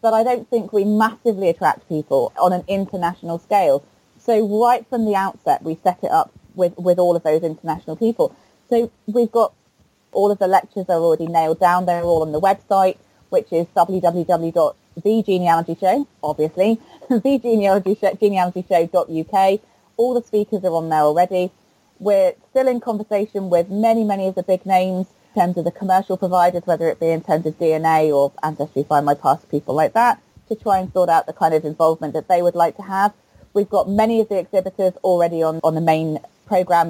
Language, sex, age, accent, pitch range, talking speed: English, female, 30-49, British, 170-220 Hz, 190 wpm